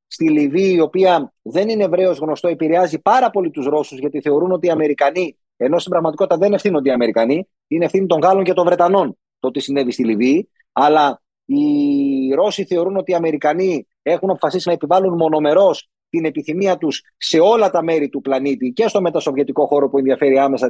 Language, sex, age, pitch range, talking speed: Greek, male, 30-49, 145-195 Hz, 190 wpm